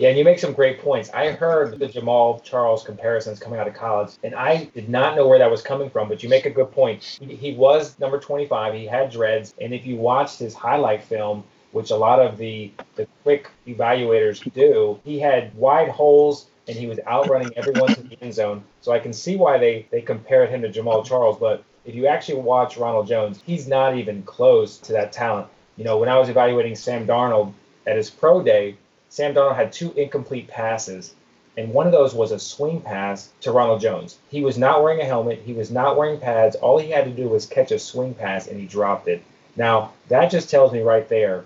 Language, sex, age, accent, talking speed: English, male, 30-49, American, 225 wpm